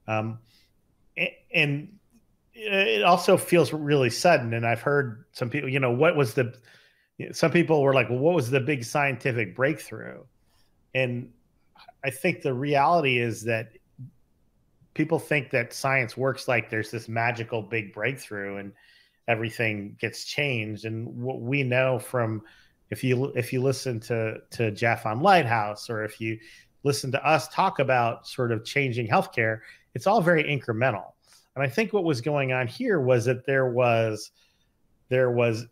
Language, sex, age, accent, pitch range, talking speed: English, male, 30-49, American, 115-145 Hz, 160 wpm